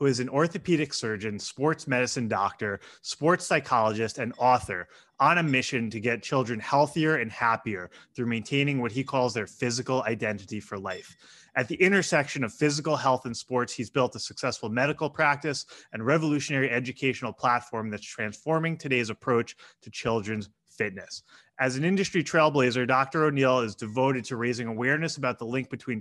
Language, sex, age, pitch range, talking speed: English, male, 20-39, 115-145 Hz, 165 wpm